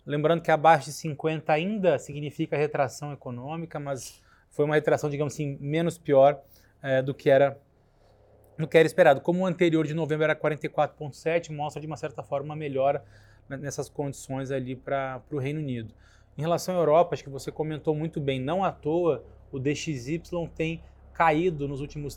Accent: Brazilian